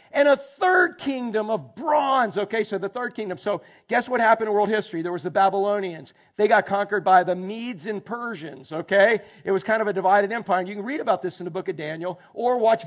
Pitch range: 180-230 Hz